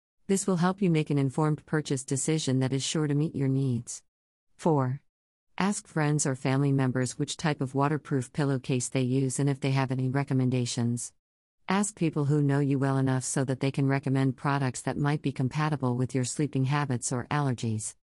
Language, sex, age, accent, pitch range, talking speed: English, female, 50-69, American, 130-155 Hz, 190 wpm